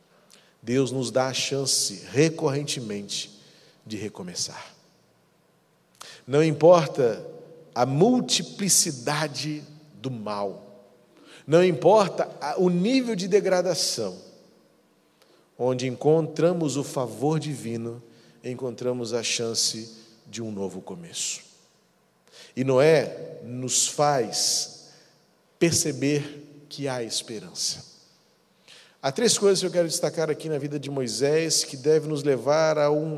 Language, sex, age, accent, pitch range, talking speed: Portuguese, male, 40-59, Brazilian, 125-160 Hz, 105 wpm